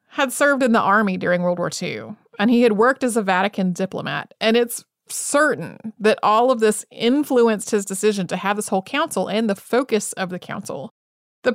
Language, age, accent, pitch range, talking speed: English, 30-49, American, 195-240 Hz, 205 wpm